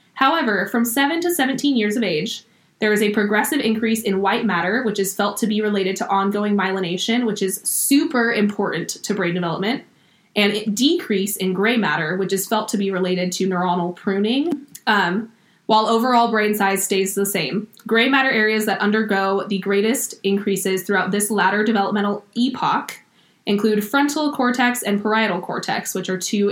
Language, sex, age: English, female, 20-39